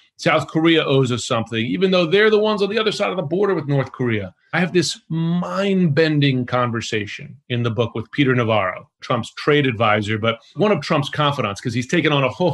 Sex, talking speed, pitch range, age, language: male, 215 wpm, 125-170 Hz, 30-49, English